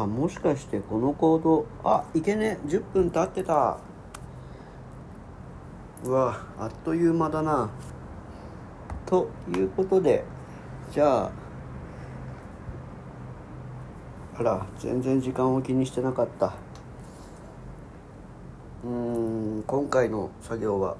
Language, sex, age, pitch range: Japanese, male, 40-59, 95-125 Hz